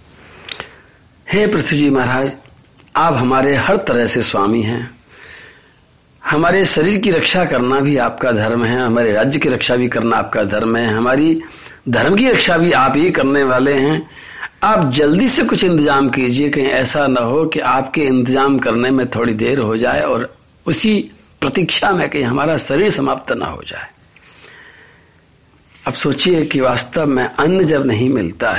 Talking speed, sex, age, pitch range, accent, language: 170 wpm, male, 50-69, 125-160 Hz, native, Hindi